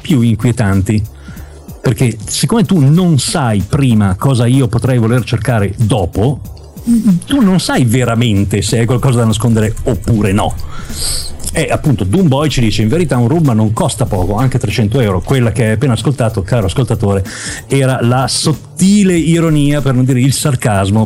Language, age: Italian, 50-69